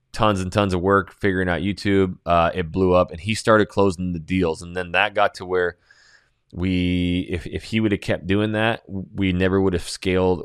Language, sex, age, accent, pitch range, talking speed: English, male, 20-39, American, 90-105 Hz, 220 wpm